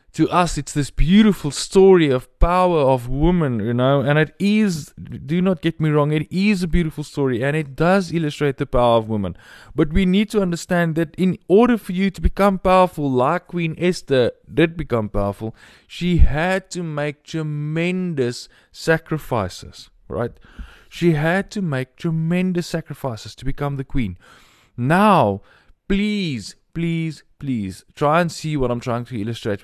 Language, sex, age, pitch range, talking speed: English, male, 20-39, 120-170 Hz, 165 wpm